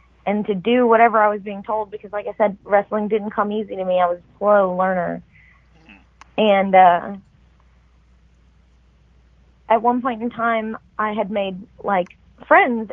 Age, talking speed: 20-39, 160 wpm